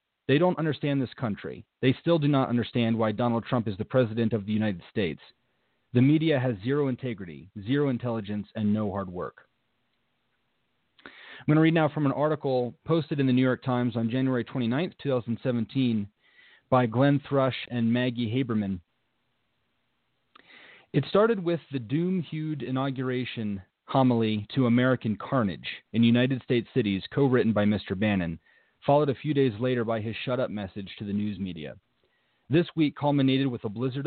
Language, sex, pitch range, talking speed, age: English, male, 110-135 Hz, 160 wpm, 30-49